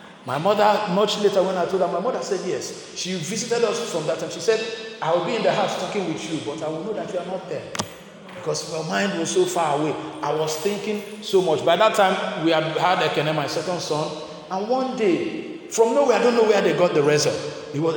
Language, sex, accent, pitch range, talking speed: English, male, Nigerian, 155-220 Hz, 245 wpm